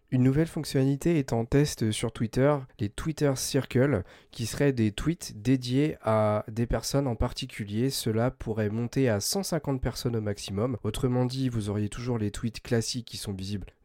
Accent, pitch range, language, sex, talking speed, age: French, 110-135 Hz, French, male, 175 wpm, 30-49